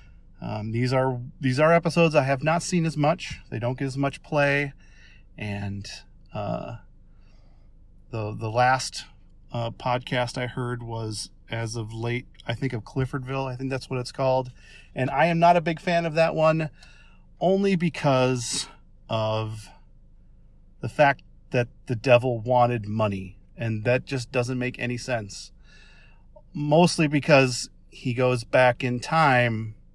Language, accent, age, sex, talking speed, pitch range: English, American, 40-59, male, 150 wpm, 110-140 Hz